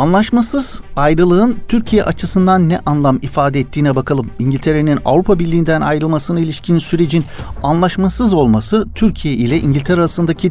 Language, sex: Turkish, male